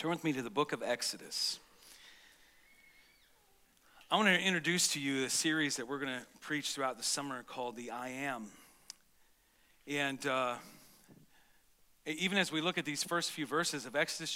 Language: English